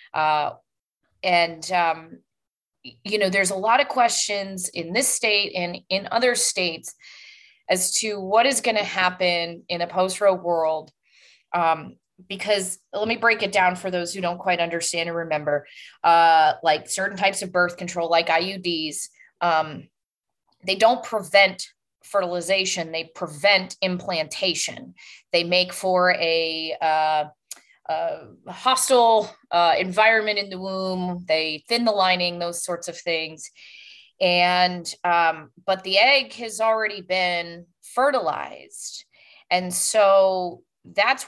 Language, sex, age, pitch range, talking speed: English, female, 20-39, 170-215 Hz, 135 wpm